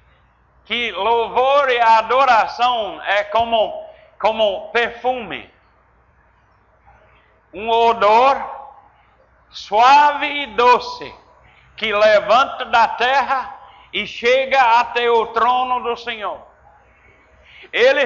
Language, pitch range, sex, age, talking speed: Portuguese, 175-245 Hz, male, 60-79, 85 wpm